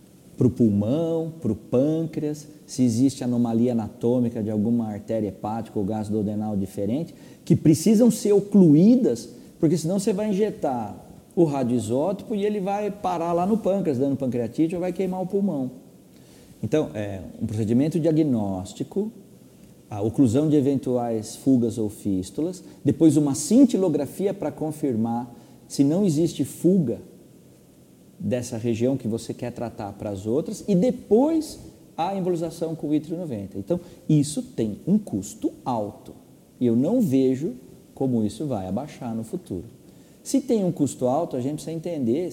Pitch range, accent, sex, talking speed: 115-175 Hz, Brazilian, male, 145 wpm